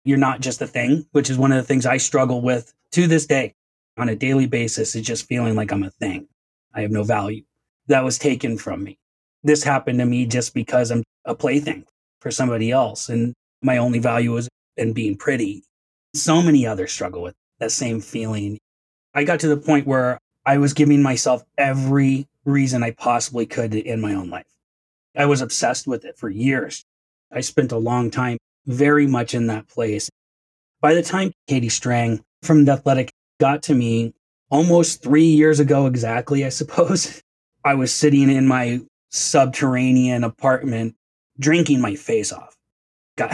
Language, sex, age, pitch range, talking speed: English, male, 30-49, 115-140 Hz, 180 wpm